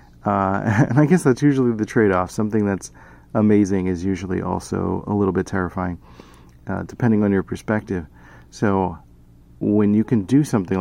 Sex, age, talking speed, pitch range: male, 30-49, 160 wpm, 90-110 Hz